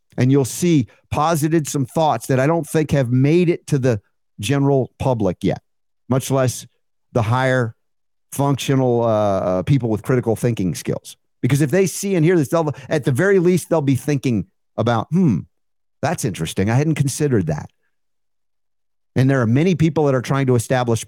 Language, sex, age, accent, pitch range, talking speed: English, male, 50-69, American, 115-150 Hz, 175 wpm